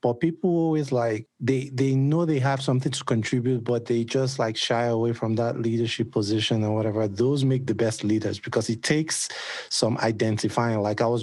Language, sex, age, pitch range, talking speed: English, male, 30-49, 110-130 Hz, 200 wpm